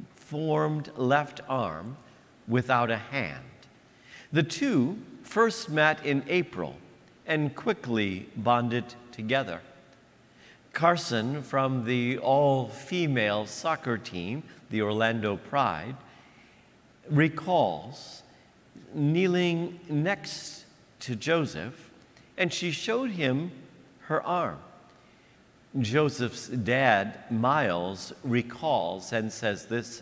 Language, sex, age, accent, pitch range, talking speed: English, male, 50-69, American, 120-160 Hz, 90 wpm